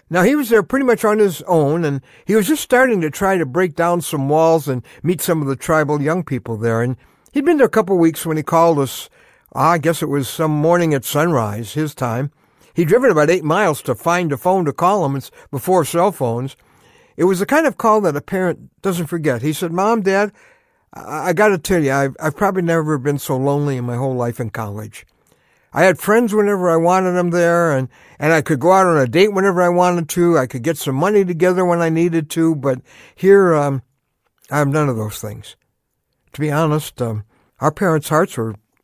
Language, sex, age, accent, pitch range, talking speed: English, male, 60-79, American, 135-180 Hz, 225 wpm